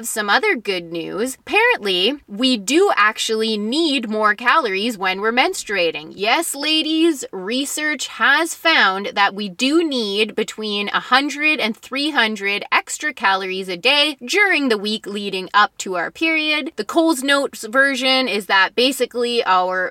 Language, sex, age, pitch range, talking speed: English, female, 20-39, 205-280 Hz, 140 wpm